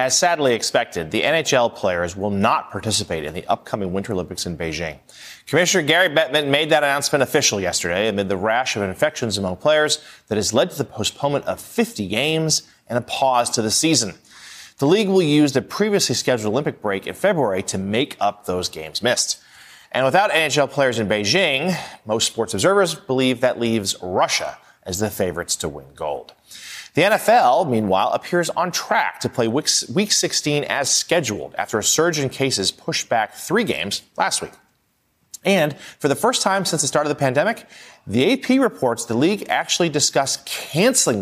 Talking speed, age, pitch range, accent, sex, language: 180 wpm, 30-49, 110-160 Hz, American, male, English